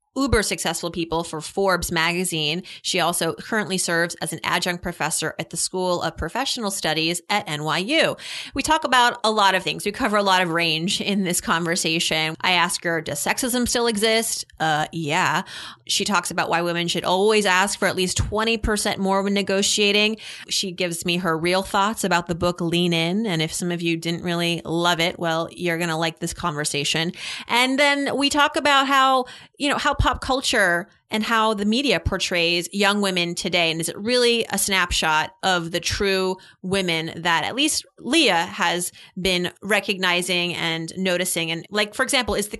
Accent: American